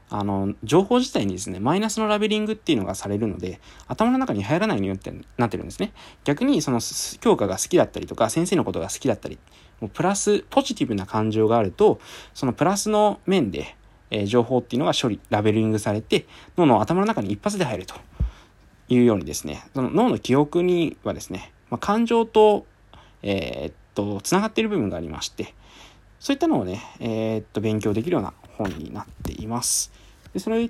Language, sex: Japanese, male